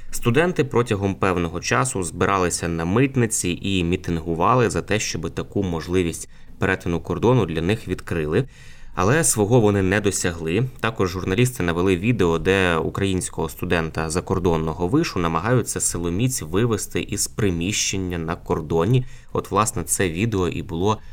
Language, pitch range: Ukrainian, 85-110 Hz